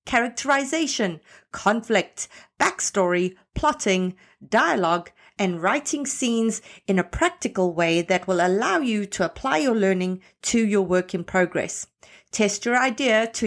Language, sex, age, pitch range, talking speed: English, female, 50-69, 185-240 Hz, 130 wpm